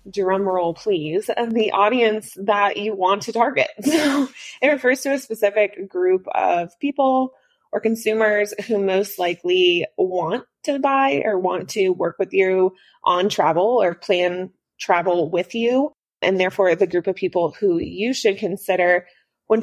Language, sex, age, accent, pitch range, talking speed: English, female, 20-39, American, 185-245 Hz, 155 wpm